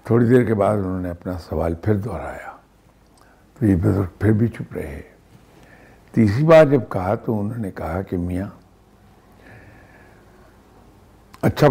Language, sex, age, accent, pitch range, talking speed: English, male, 60-79, Indian, 95-120 Hz, 125 wpm